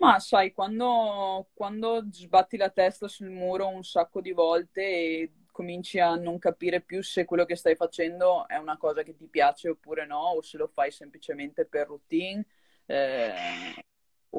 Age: 20-39